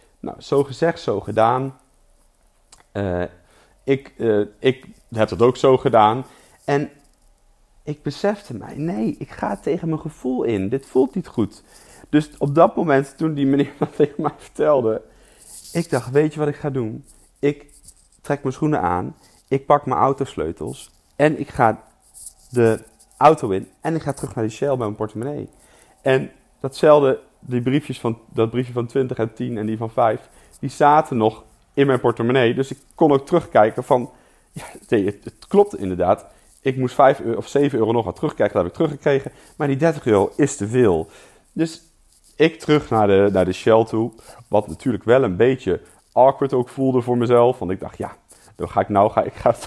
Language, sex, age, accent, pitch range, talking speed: Dutch, male, 40-59, Dutch, 115-150 Hz, 190 wpm